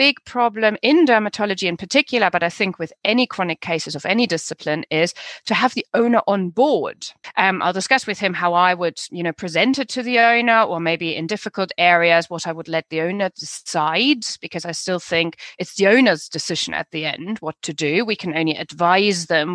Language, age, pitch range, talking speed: English, 30-49, 170-240 Hz, 210 wpm